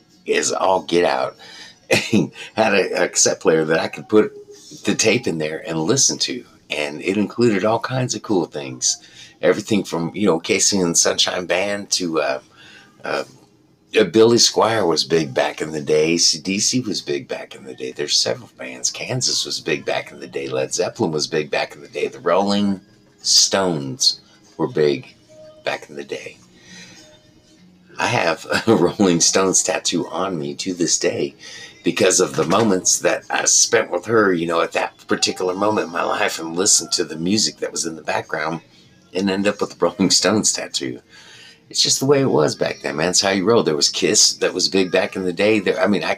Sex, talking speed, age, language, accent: male, 205 wpm, 50-69, English, American